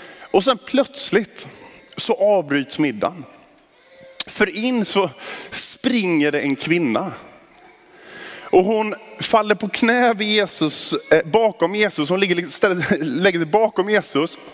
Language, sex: Swedish, male